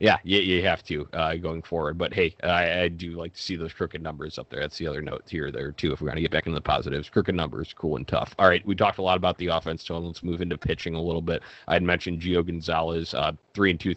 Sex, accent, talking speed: male, American, 290 wpm